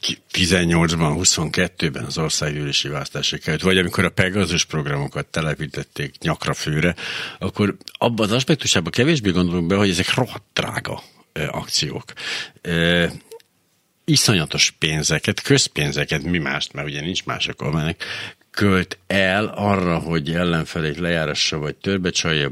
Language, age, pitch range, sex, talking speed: Hungarian, 60-79, 80-105 Hz, male, 115 wpm